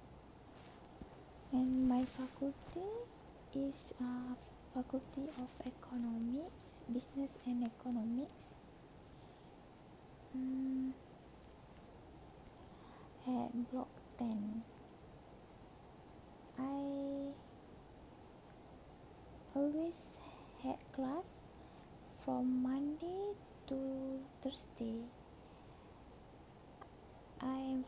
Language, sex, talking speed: English, female, 55 wpm